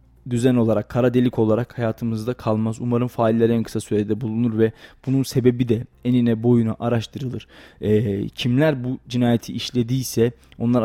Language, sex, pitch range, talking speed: Turkish, male, 115-130 Hz, 145 wpm